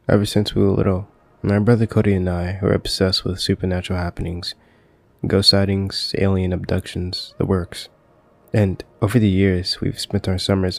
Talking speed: 160 wpm